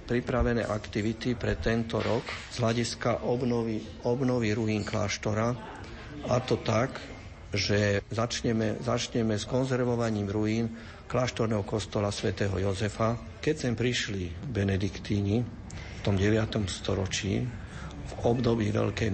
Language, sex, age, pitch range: Slovak, male, 50-69, 100-115 Hz